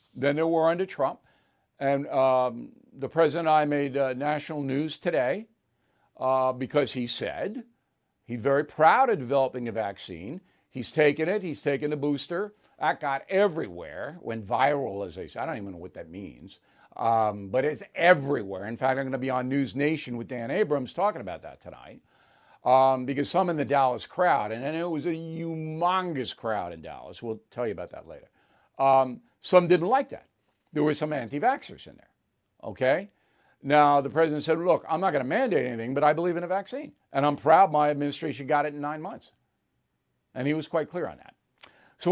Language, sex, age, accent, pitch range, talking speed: English, male, 50-69, American, 135-170 Hz, 190 wpm